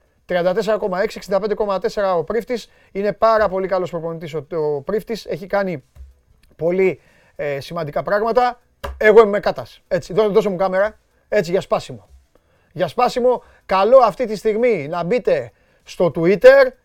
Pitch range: 165-240 Hz